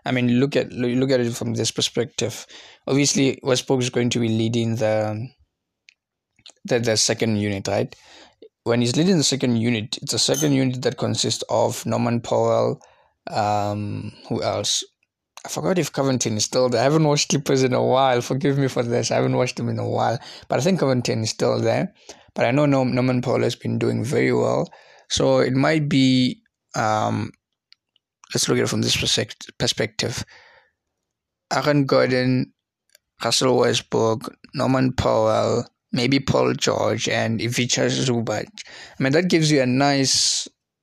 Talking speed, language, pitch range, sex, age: 170 wpm, English, 115-135 Hz, male, 20-39